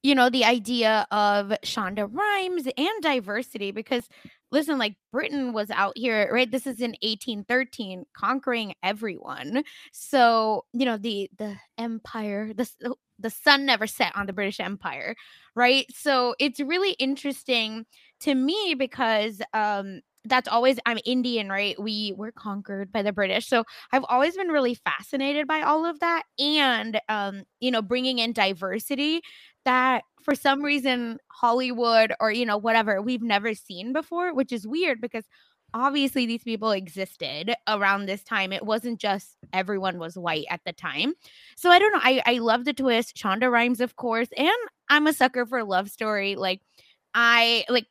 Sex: female